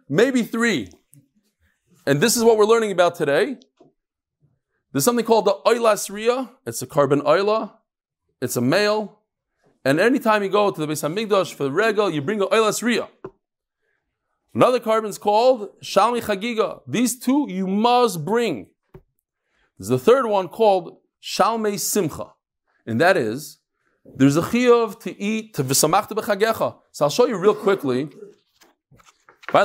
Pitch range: 145-225 Hz